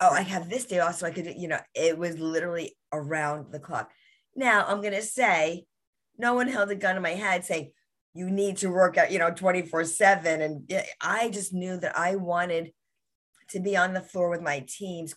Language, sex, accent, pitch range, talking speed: English, female, American, 145-180 Hz, 220 wpm